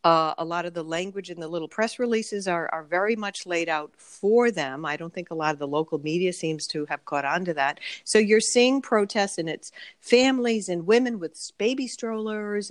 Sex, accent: female, American